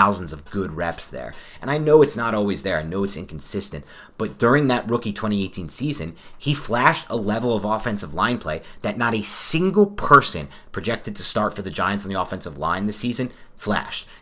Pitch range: 95-120 Hz